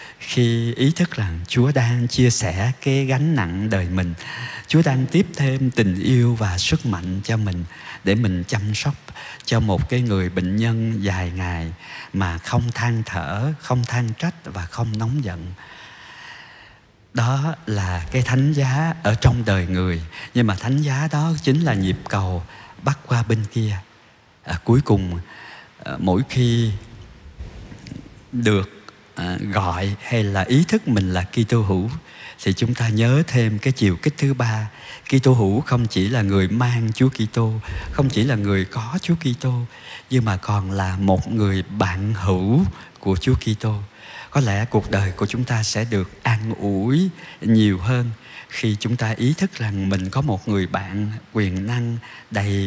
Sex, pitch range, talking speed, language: male, 100-125 Hz, 170 wpm, Vietnamese